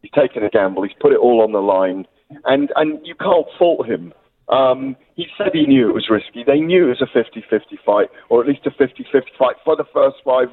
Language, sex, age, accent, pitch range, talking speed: English, male, 40-59, British, 115-155 Hz, 240 wpm